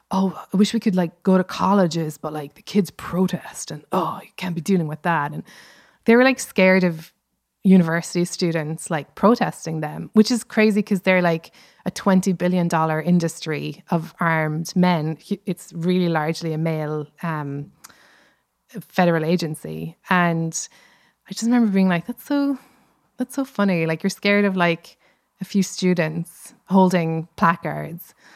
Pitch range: 165-200 Hz